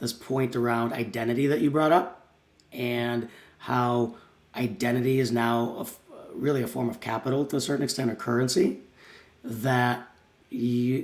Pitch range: 115-130 Hz